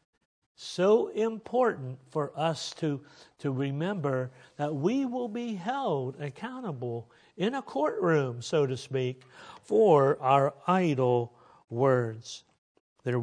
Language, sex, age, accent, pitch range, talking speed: English, male, 60-79, American, 130-185 Hz, 110 wpm